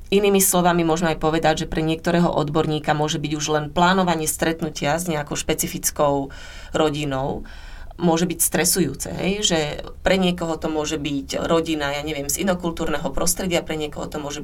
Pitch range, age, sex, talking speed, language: 145-170 Hz, 30-49, female, 160 wpm, Slovak